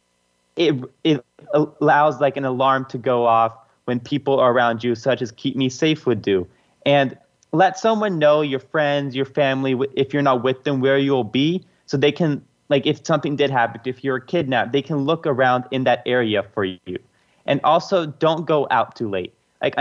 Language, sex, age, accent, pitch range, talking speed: English, male, 30-49, American, 125-150 Hz, 195 wpm